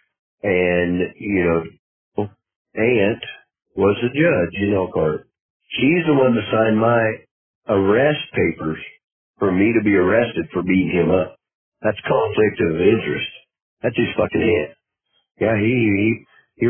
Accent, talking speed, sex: American, 140 wpm, male